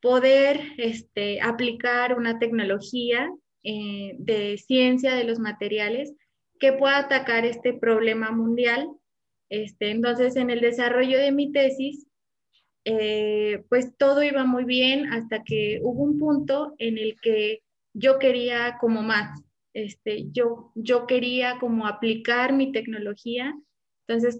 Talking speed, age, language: 130 wpm, 20-39, Spanish